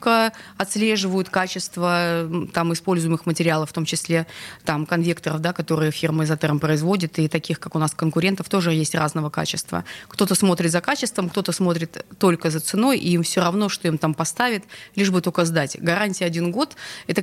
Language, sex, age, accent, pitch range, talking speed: Russian, female, 20-39, native, 165-210 Hz, 165 wpm